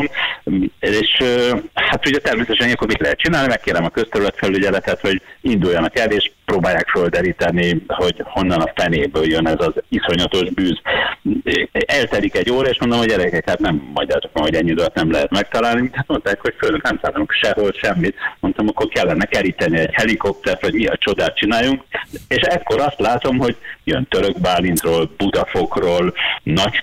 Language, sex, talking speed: Hungarian, male, 160 wpm